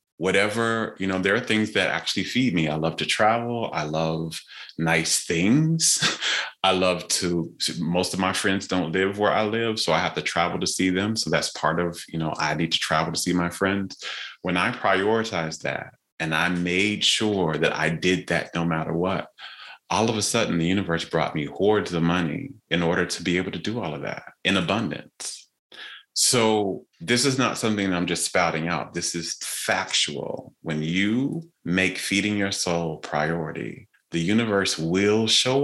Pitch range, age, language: 85-110 Hz, 30-49, English